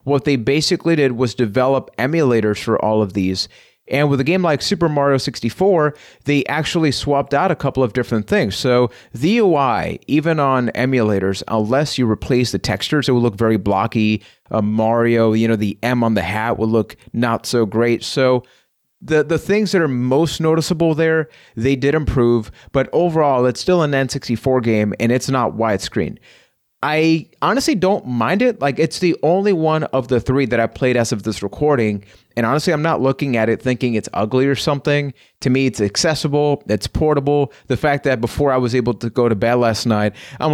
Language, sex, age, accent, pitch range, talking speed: English, male, 30-49, American, 115-145 Hz, 195 wpm